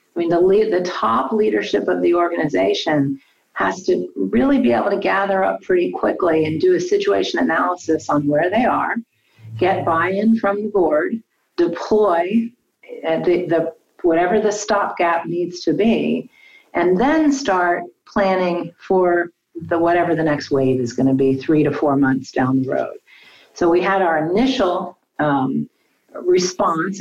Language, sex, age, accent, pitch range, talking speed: English, female, 40-59, American, 160-210 Hz, 160 wpm